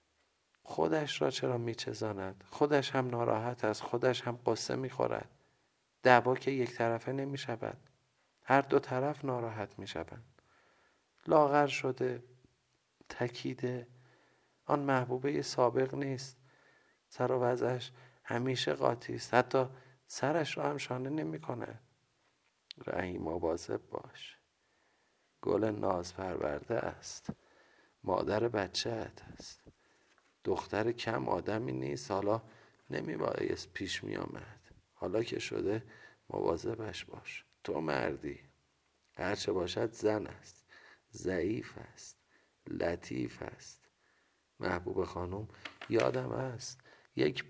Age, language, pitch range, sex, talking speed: 50-69, Persian, 110-130 Hz, male, 95 wpm